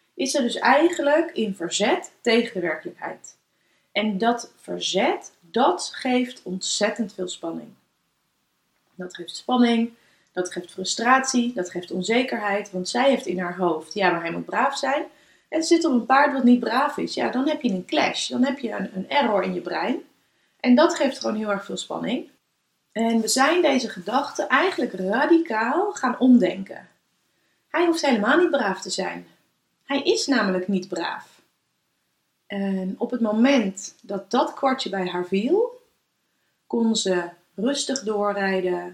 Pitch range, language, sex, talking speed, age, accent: 190-255 Hz, Dutch, female, 160 wpm, 30-49, Dutch